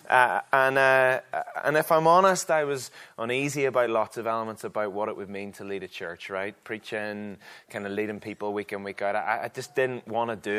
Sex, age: male, 20-39